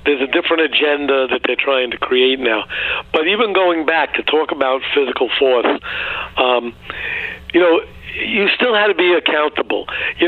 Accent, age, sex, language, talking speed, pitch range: American, 60-79, male, English, 170 wpm, 130-180 Hz